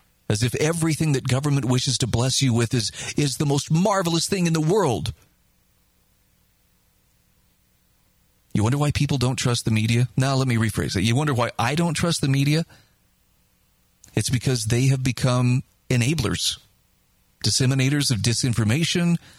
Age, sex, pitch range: 40-59, male, 115-150 Hz